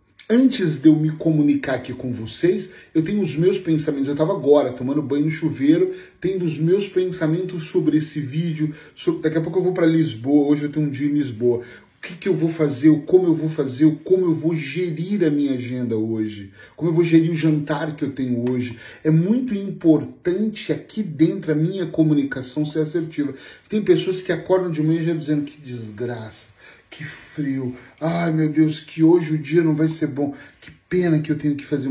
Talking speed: 205 wpm